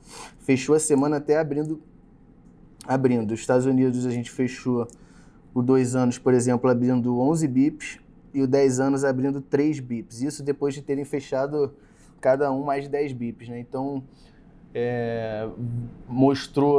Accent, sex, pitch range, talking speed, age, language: Brazilian, male, 120-140 Hz, 150 wpm, 20-39, Portuguese